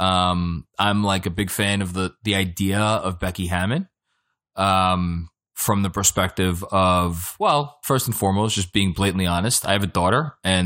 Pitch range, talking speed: 95-130 Hz, 175 wpm